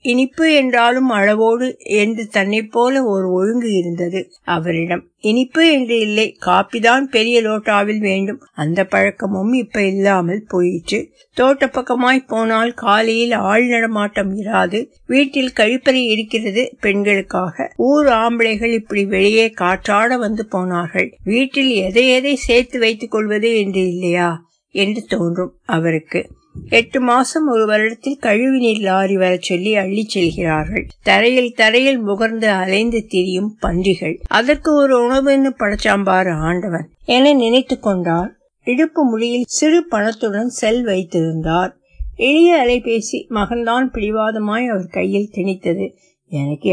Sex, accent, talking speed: female, native, 80 wpm